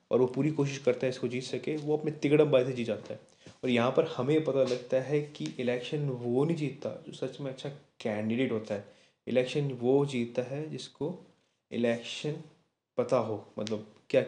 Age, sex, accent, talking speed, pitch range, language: 20-39, male, native, 195 wpm, 120-140 Hz, Hindi